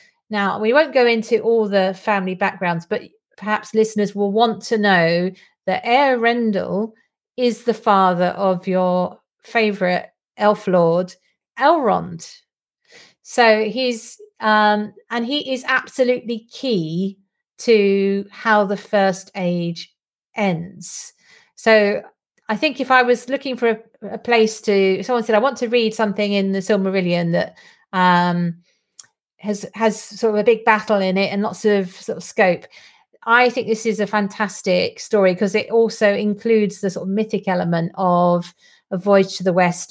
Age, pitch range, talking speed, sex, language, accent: 40-59, 190-235 Hz, 160 wpm, female, English, British